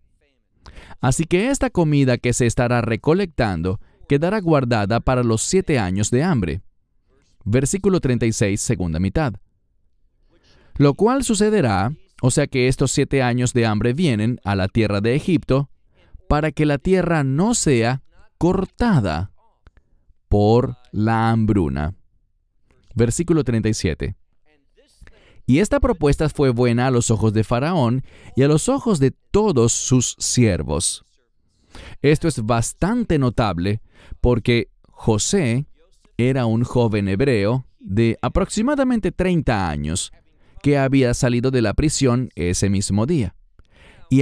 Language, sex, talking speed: English, male, 125 wpm